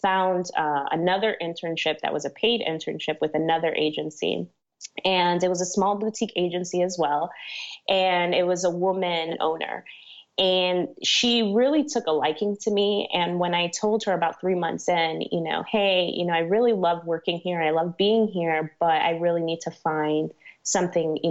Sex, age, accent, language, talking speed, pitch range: female, 20-39, American, English, 185 wpm, 165-195 Hz